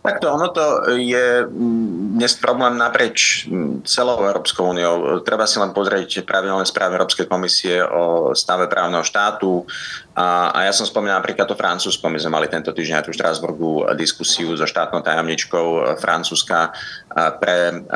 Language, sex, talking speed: Slovak, male, 150 wpm